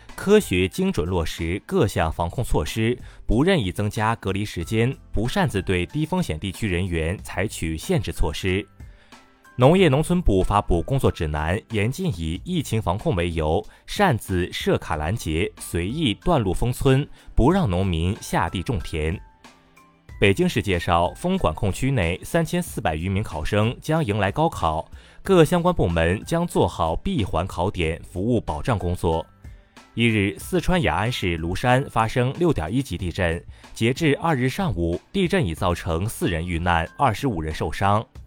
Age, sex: 30-49, male